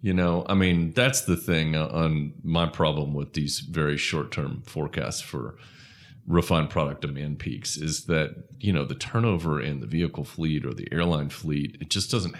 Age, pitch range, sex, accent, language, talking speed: 30-49, 75-105 Hz, male, American, English, 185 wpm